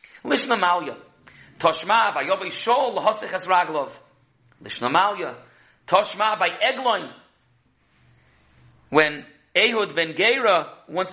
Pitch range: 160-210 Hz